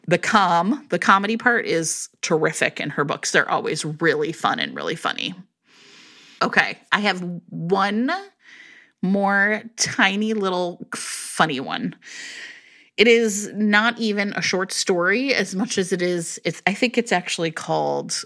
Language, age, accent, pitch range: English, 30-49, American, 175-240 Hz